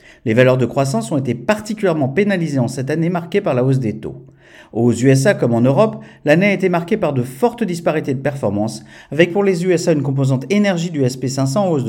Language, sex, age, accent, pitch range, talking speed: French, male, 50-69, French, 130-180 Hz, 215 wpm